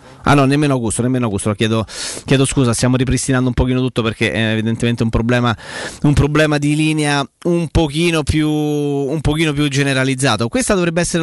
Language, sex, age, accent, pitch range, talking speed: Italian, male, 30-49, native, 135-165 Hz, 180 wpm